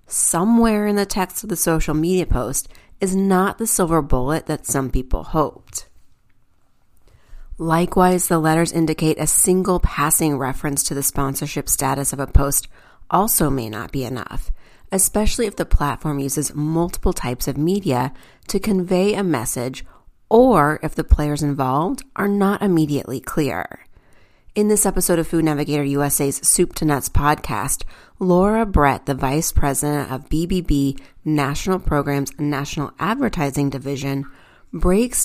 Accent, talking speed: American, 145 wpm